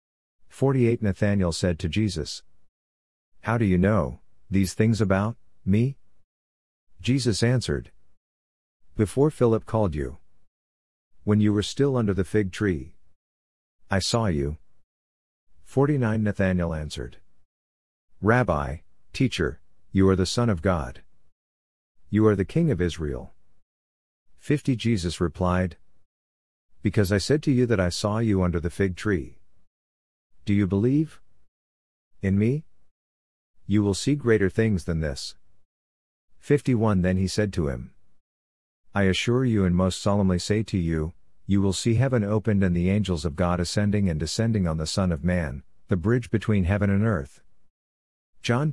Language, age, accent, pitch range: English, 50-69, American, 75-105 Hz